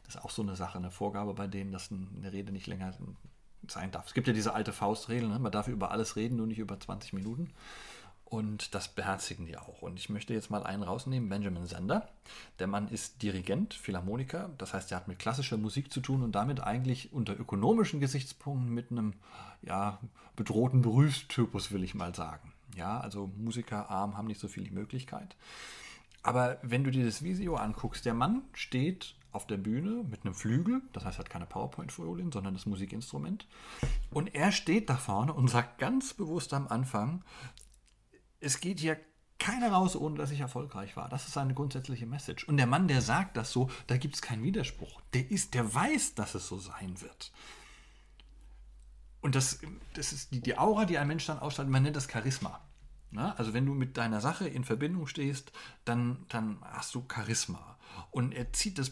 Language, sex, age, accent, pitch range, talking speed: German, male, 40-59, German, 105-140 Hz, 195 wpm